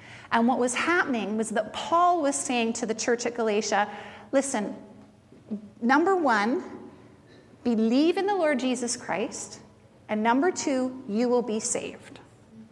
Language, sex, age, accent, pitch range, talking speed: English, female, 30-49, American, 225-315 Hz, 140 wpm